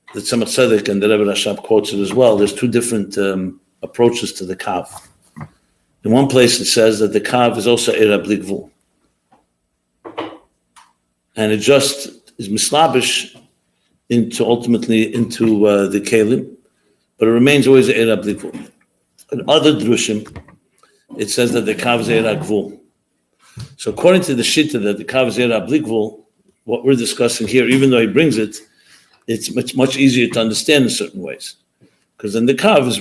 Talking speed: 155 wpm